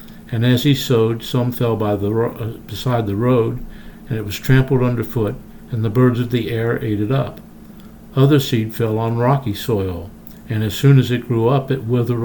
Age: 60-79